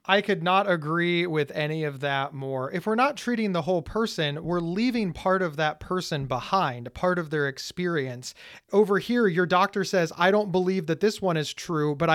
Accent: American